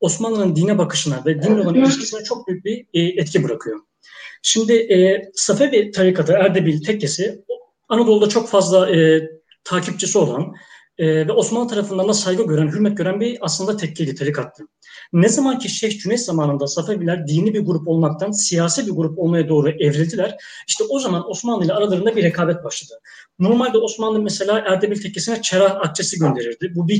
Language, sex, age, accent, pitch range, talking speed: Turkish, male, 30-49, native, 170-225 Hz, 160 wpm